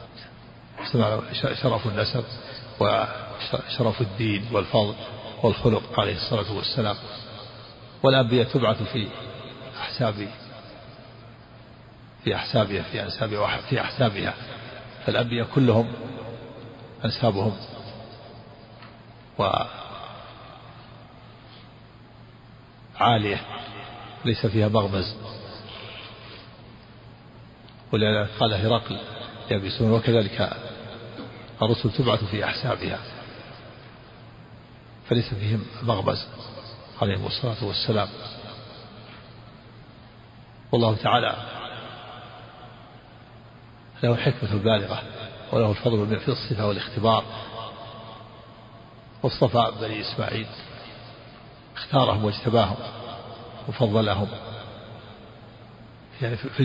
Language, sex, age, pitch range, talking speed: Arabic, male, 50-69, 110-120 Hz, 60 wpm